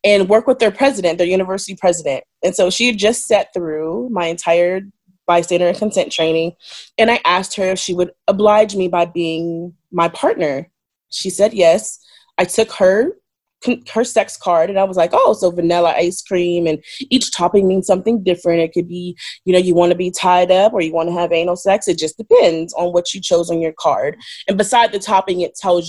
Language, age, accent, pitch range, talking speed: English, 20-39, American, 175-210 Hz, 210 wpm